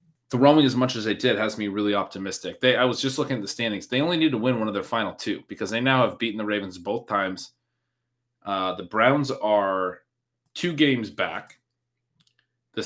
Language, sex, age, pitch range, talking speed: English, male, 30-49, 105-130 Hz, 215 wpm